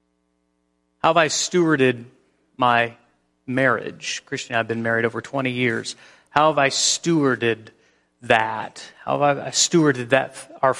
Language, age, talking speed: English, 30-49, 140 wpm